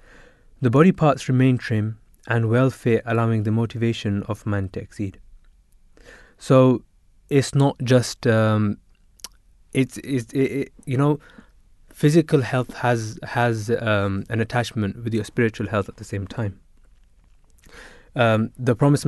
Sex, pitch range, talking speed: male, 105-125 Hz, 135 wpm